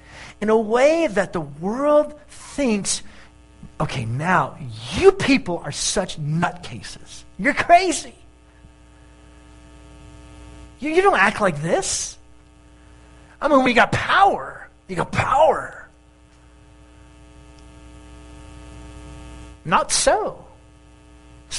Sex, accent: male, American